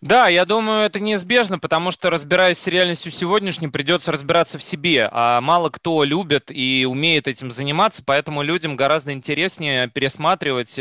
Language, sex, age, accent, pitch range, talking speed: Russian, male, 20-39, native, 125-165 Hz, 155 wpm